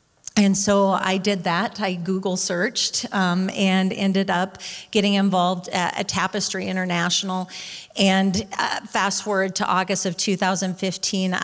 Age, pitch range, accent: 40-59, 180-195 Hz, American